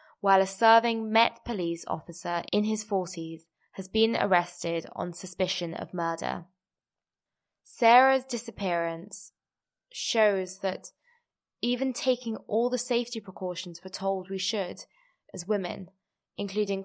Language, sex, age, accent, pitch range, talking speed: English, female, 20-39, British, 175-210 Hz, 120 wpm